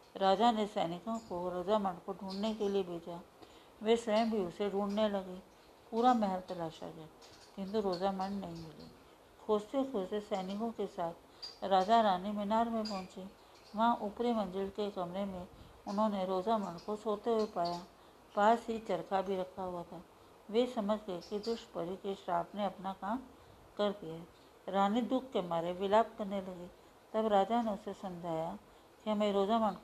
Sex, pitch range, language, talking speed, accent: female, 180-215 Hz, Hindi, 165 wpm, native